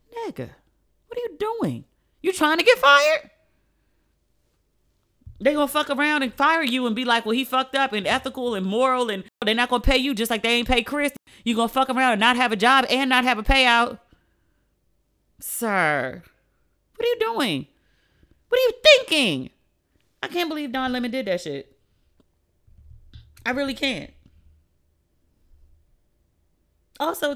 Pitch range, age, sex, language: 235-300 Hz, 30-49, female, English